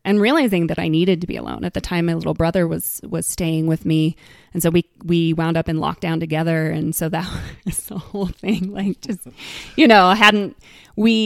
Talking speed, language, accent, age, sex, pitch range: 220 wpm, English, American, 20-39, female, 160-190 Hz